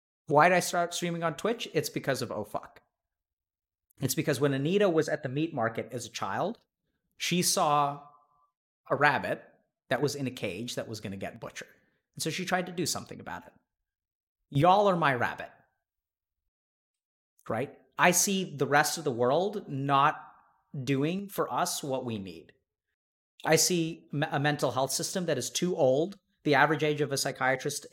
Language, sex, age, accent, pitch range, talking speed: English, male, 30-49, American, 110-160 Hz, 180 wpm